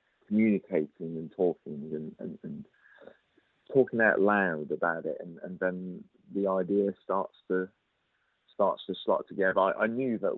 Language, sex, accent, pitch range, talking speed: English, male, British, 85-100 Hz, 150 wpm